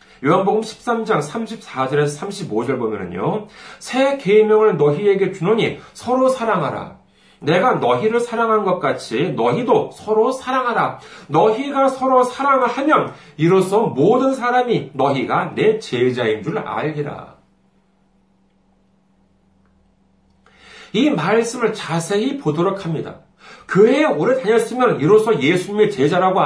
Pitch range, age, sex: 155-230 Hz, 40-59, male